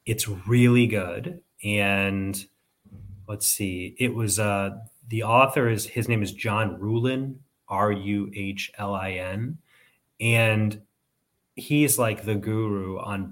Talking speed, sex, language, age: 110 wpm, male, English, 30-49